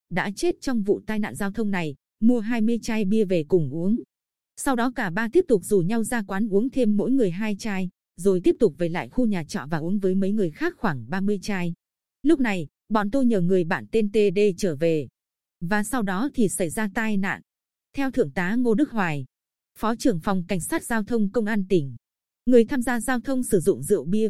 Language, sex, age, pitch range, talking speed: Vietnamese, female, 20-39, 190-235 Hz, 230 wpm